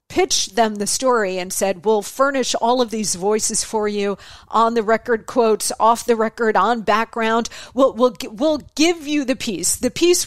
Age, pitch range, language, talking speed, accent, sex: 40-59, 210-280 Hz, English, 185 wpm, American, female